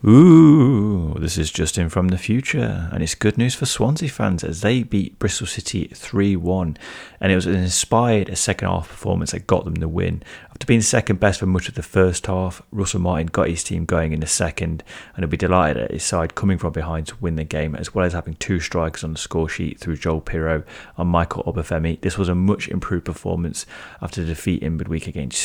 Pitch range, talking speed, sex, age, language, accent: 80-95 Hz, 220 wpm, male, 30-49, English, British